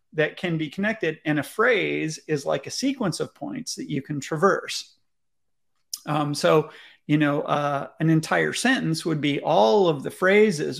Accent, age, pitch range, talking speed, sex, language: American, 30-49, 145-185 Hz, 170 wpm, male, English